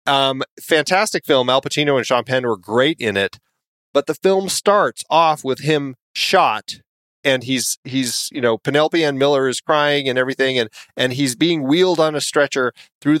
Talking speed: 185 wpm